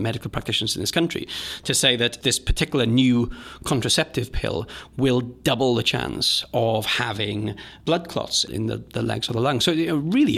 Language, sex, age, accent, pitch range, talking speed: English, male, 30-49, British, 115-145 Hz, 180 wpm